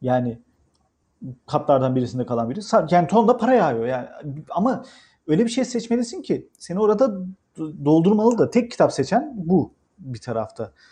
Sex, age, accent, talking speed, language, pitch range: male, 40-59, native, 145 wpm, Turkish, 135-220 Hz